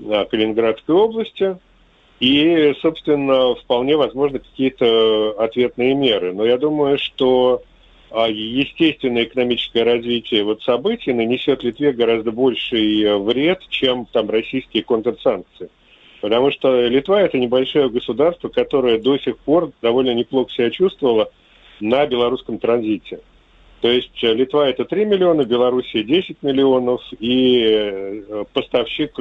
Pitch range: 115-155 Hz